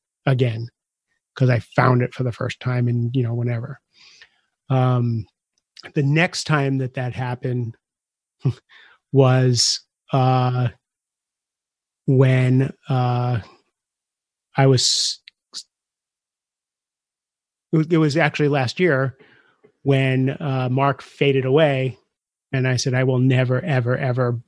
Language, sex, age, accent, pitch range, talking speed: English, male, 30-49, American, 125-145 Hz, 110 wpm